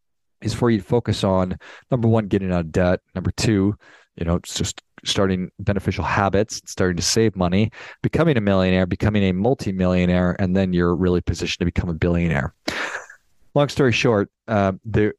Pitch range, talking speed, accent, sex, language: 95-110 Hz, 180 wpm, American, male, English